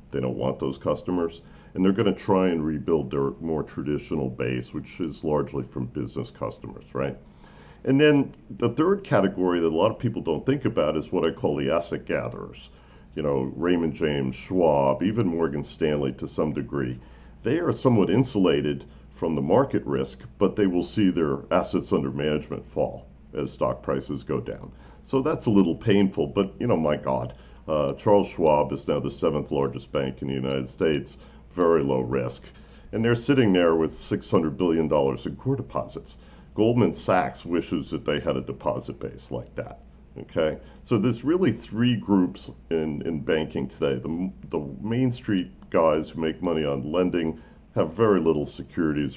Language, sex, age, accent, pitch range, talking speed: English, male, 60-79, American, 65-90 Hz, 180 wpm